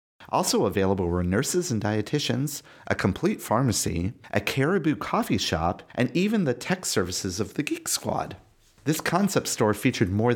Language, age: English, 30-49